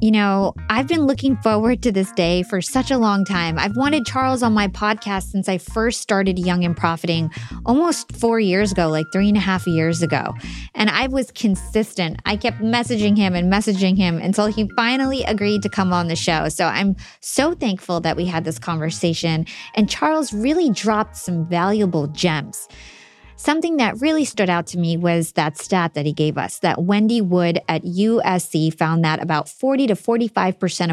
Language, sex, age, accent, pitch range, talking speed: English, female, 20-39, American, 170-225 Hz, 190 wpm